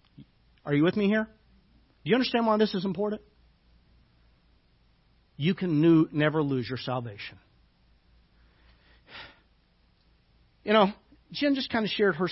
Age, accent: 50-69, American